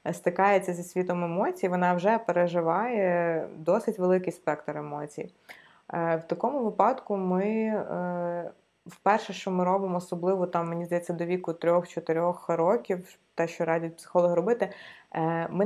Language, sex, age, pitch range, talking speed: Ukrainian, female, 20-39, 165-185 Hz, 125 wpm